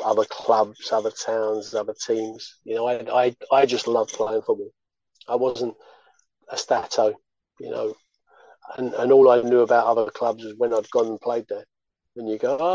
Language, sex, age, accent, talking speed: English, male, 40-59, British, 190 wpm